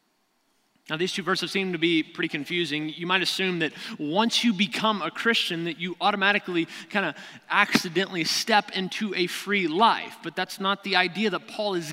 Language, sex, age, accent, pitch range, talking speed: English, male, 30-49, American, 170-225 Hz, 185 wpm